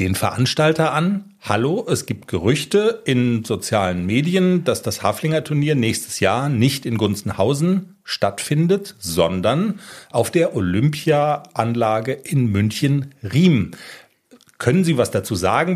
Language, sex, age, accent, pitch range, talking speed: German, male, 40-59, German, 110-170 Hz, 115 wpm